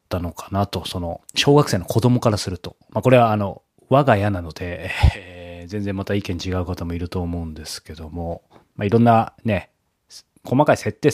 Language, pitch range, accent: Japanese, 90-115 Hz, native